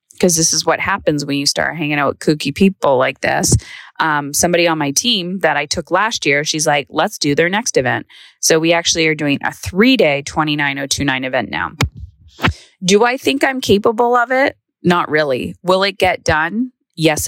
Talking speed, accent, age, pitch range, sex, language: 195 wpm, American, 20-39, 155-190 Hz, female, English